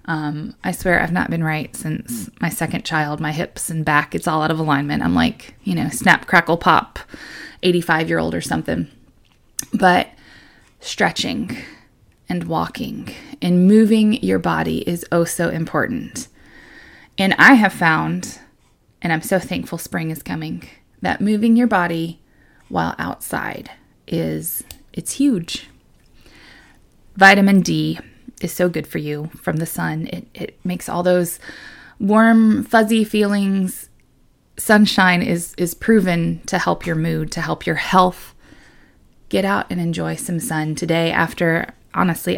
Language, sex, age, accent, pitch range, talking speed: English, female, 20-39, American, 160-200 Hz, 145 wpm